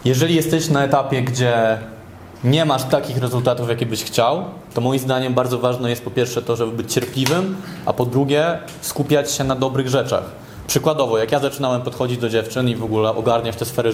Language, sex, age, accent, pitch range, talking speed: Polish, male, 20-39, native, 125-155 Hz, 195 wpm